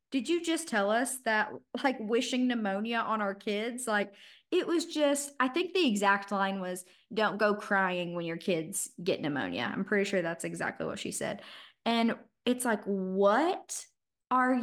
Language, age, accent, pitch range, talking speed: English, 20-39, American, 195-250 Hz, 175 wpm